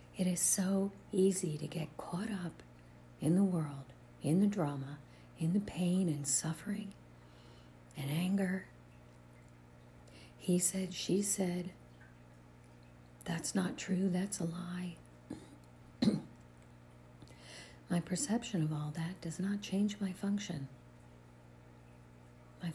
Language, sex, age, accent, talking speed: English, female, 50-69, American, 110 wpm